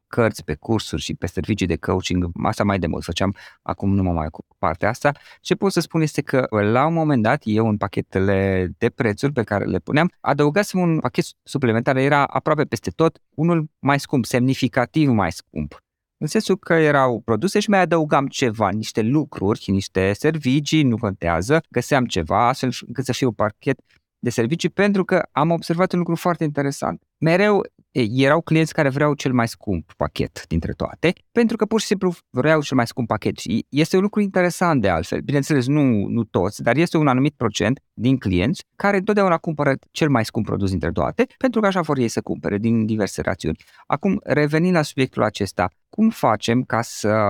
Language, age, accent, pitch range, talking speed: Romanian, 20-39, native, 100-155 Hz, 195 wpm